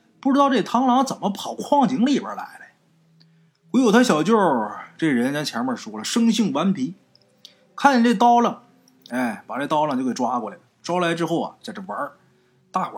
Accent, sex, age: native, male, 20-39